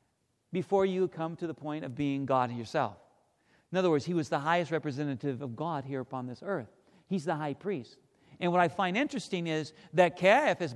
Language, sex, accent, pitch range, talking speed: English, male, American, 155-220 Hz, 200 wpm